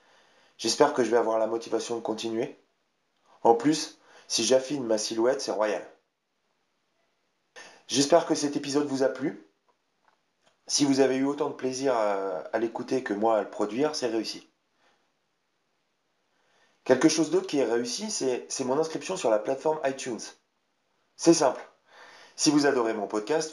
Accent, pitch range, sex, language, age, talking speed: French, 115-140 Hz, male, French, 30-49, 155 wpm